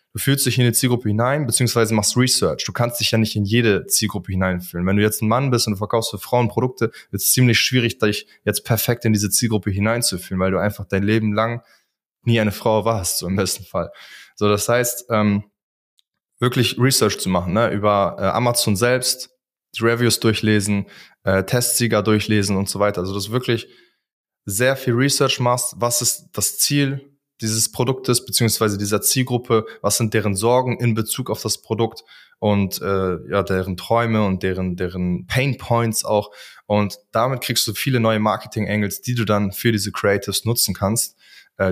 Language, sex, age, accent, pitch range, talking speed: German, male, 20-39, German, 105-120 Hz, 190 wpm